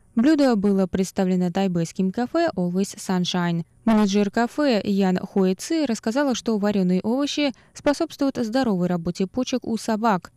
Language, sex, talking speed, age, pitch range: Russian, female, 125 wpm, 20-39, 185-235 Hz